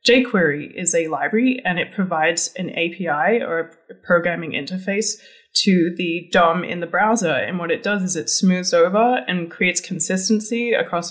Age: 20-39